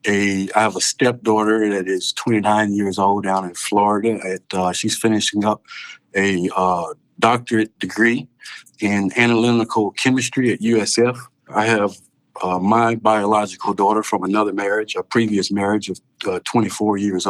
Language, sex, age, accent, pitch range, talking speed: English, male, 50-69, American, 95-115 Hz, 140 wpm